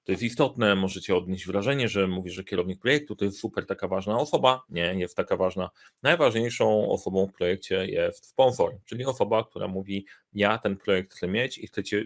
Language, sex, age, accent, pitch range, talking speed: Polish, male, 30-49, native, 100-115 Hz, 190 wpm